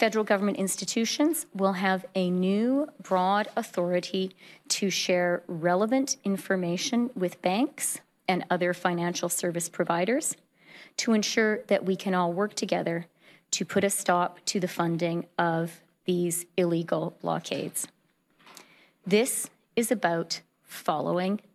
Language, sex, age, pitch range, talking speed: English, female, 40-59, 175-205 Hz, 120 wpm